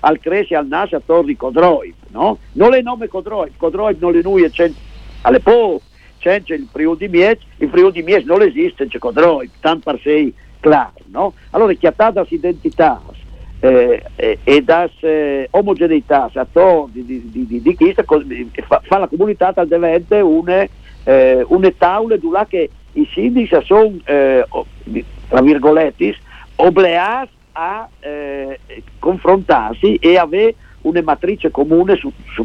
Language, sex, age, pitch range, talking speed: Italian, male, 60-79, 160-245 Hz, 155 wpm